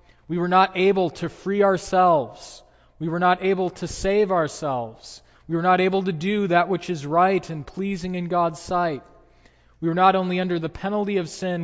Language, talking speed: English, 195 wpm